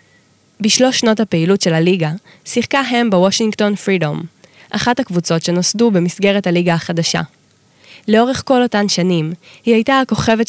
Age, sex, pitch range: 20-39, female, 170-220 Hz